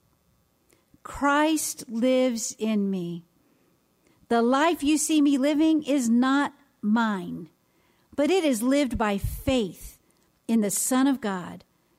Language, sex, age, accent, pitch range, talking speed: English, female, 50-69, American, 205-275 Hz, 120 wpm